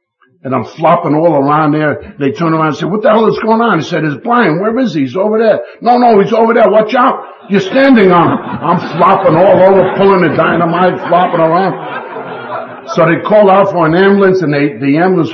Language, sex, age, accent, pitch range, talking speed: English, male, 50-69, American, 135-175 Hz, 225 wpm